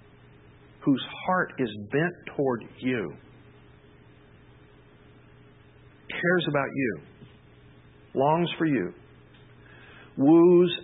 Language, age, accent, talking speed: English, 50-69, American, 70 wpm